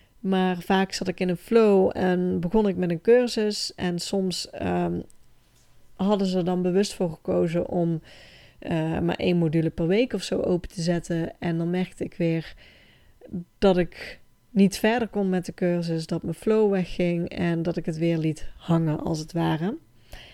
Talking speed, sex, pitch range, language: 185 wpm, female, 170-195 Hz, Dutch